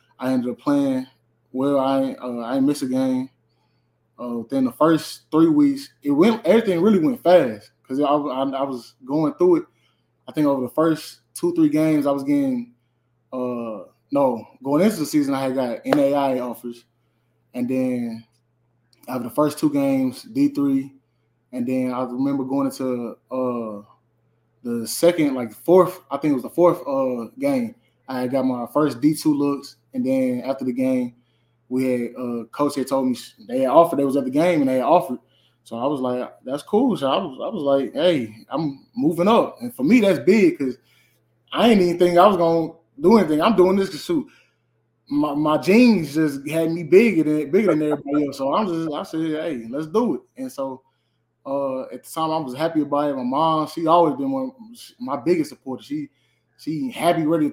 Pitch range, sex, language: 125-175 Hz, male, English